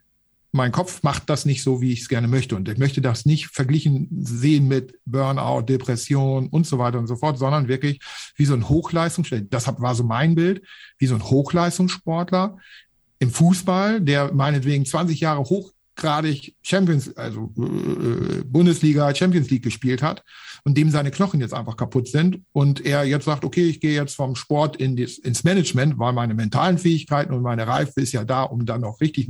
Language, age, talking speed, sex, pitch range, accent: German, 50-69, 190 wpm, male, 130-155 Hz, German